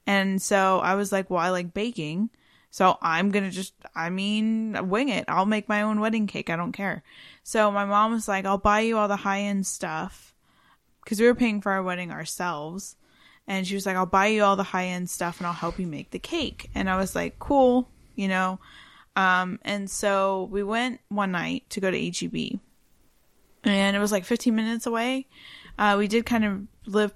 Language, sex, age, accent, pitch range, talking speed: English, female, 10-29, American, 185-220 Hz, 210 wpm